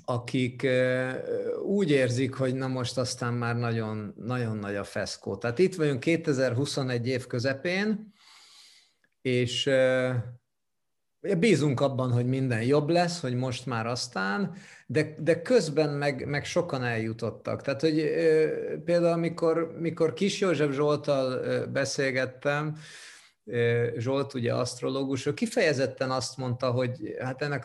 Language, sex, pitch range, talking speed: Hungarian, male, 120-150 Hz, 115 wpm